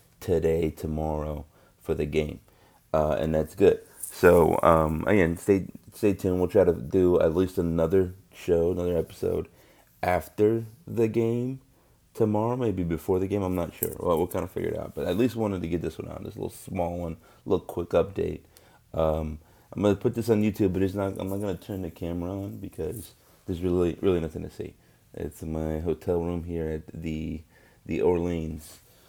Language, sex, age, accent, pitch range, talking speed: English, male, 30-49, American, 85-110 Hz, 195 wpm